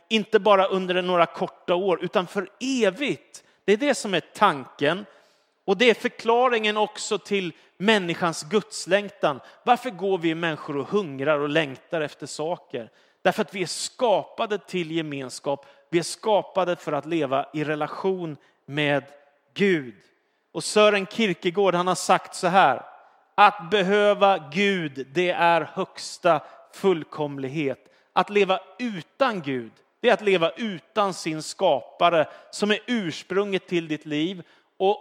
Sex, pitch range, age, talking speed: male, 165-205 Hz, 30-49, 140 wpm